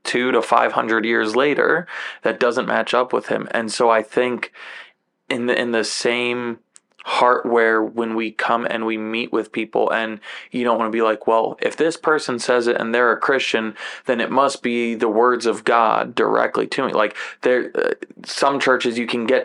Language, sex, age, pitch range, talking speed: English, male, 20-39, 115-125 Hz, 205 wpm